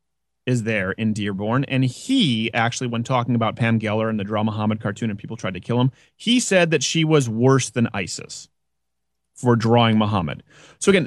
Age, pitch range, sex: 30-49, 110-150 Hz, male